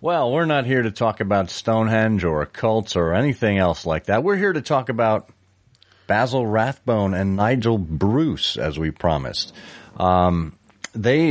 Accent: American